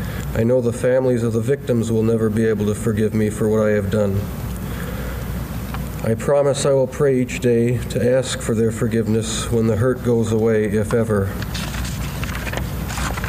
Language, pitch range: German, 110-125 Hz